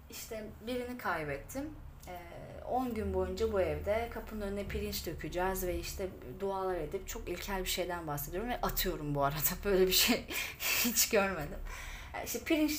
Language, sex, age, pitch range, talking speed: Turkish, female, 30-49, 170-240 Hz, 150 wpm